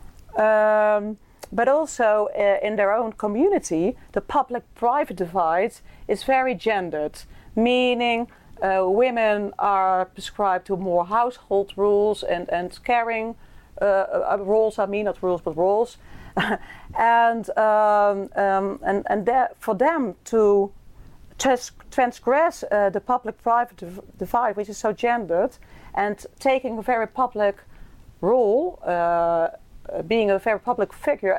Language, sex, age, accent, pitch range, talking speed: English, female, 40-59, Dutch, 185-235 Hz, 125 wpm